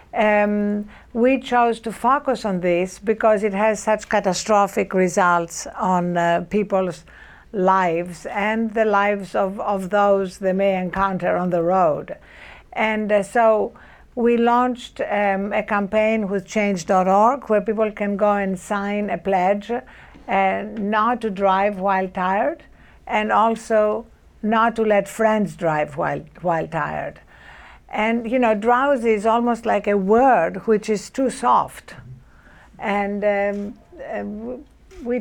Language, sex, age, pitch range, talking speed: English, female, 60-79, 190-220 Hz, 135 wpm